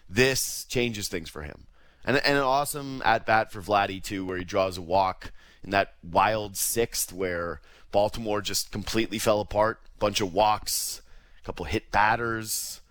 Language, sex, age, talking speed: English, male, 30-49, 165 wpm